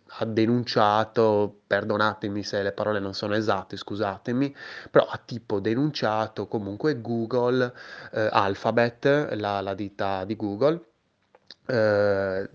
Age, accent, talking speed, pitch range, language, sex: 20-39, native, 115 wpm, 105-125 Hz, Italian, male